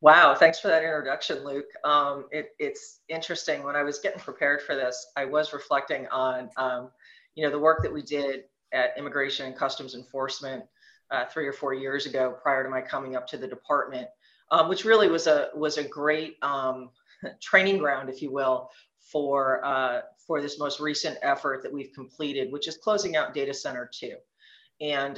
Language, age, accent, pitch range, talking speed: English, 30-49, American, 130-160 Hz, 190 wpm